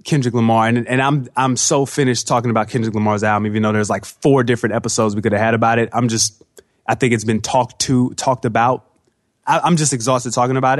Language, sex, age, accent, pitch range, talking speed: English, male, 20-39, American, 110-135 Hz, 235 wpm